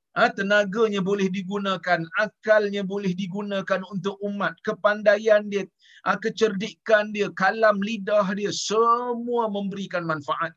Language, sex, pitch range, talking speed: Malayalam, male, 160-220 Hz, 110 wpm